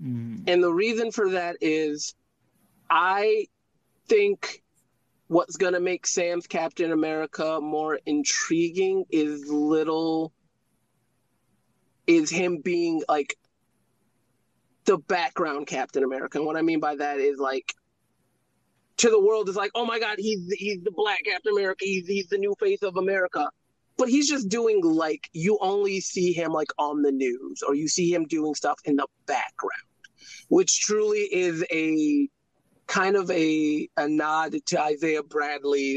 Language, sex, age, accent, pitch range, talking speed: English, male, 30-49, American, 150-215 Hz, 150 wpm